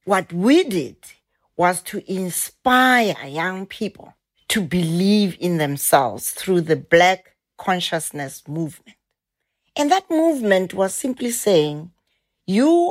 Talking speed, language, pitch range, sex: 110 wpm, English, 175-250 Hz, female